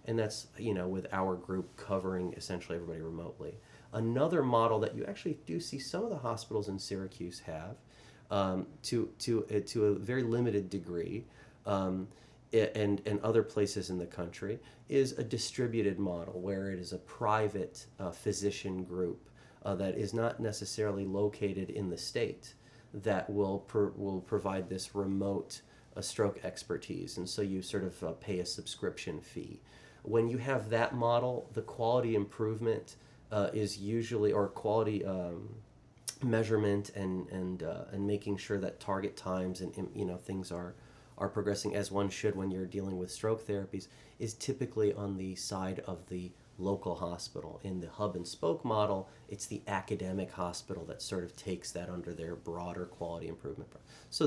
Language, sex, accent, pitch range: English, male, American, 95-110 Hz